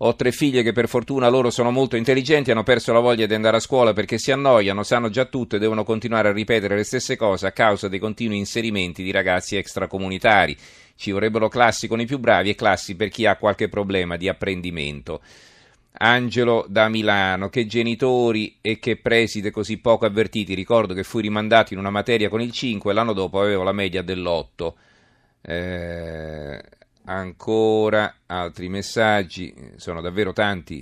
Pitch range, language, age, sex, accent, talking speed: 95-115 Hz, Italian, 40-59, male, native, 175 wpm